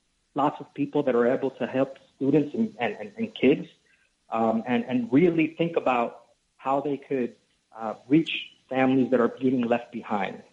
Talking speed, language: 170 wpm, English